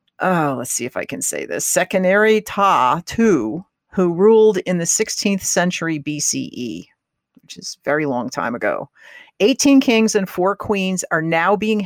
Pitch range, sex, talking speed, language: 150-190 Hz, female, 165 wpm, English